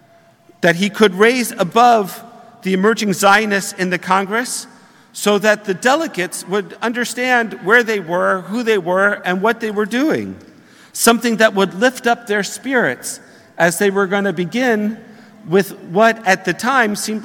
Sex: male